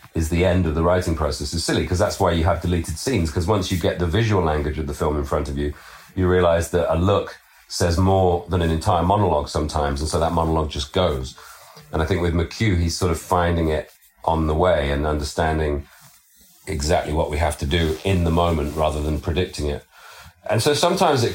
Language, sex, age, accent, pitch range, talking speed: English, male, 40-59, British, 80-95 Hz, 225 wpm